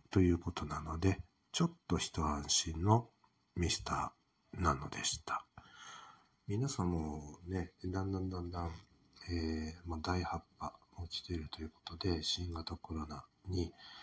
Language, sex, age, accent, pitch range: Japanese, male, 60-79, native, 80-100 Hz